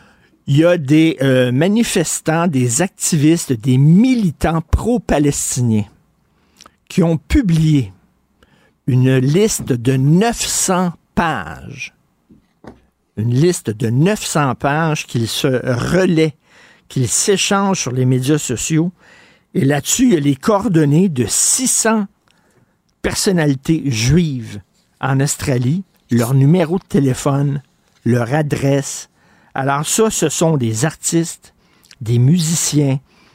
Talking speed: 110 wpm